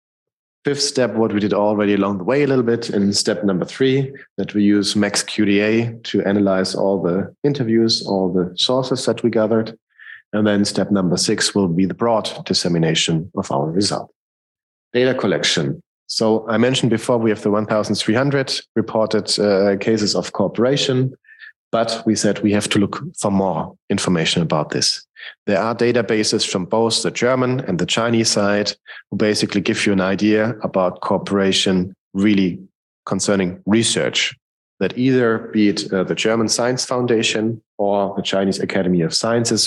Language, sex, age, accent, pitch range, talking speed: French, male, 40-59, German, 100-115 Hz, 165 wpm